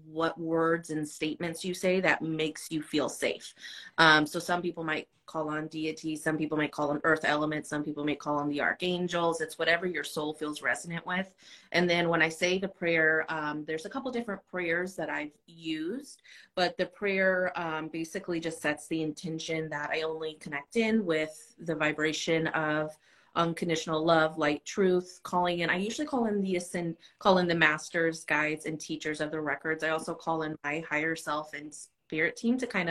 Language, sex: English, female